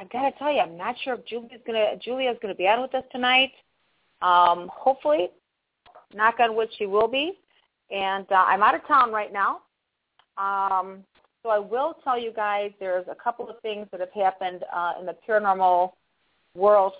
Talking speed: 190 wpm